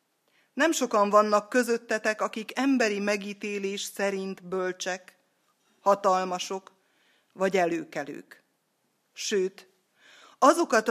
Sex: female